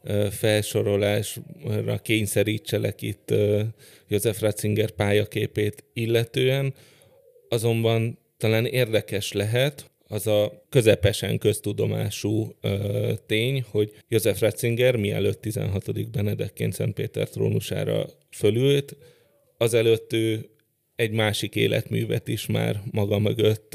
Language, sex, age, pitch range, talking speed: Hungarian, male, 30-49, 105-120 Hz, 90 wpm